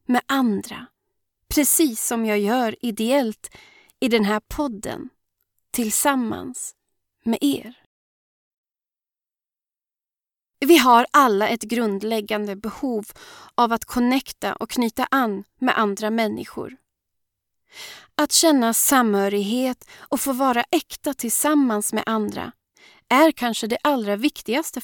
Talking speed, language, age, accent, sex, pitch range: 105 wpm, Swedish, 30-49, native, female, 220-280 Hz